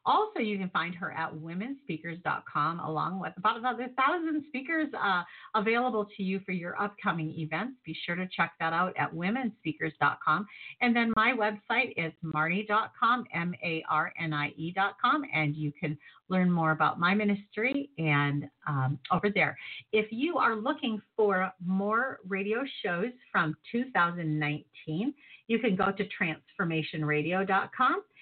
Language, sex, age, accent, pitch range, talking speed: English, female, 50-69, American, 160-215 Hz, 135 wpm